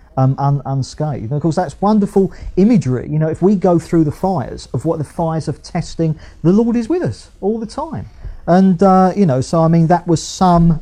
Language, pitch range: English, 125-185 Hz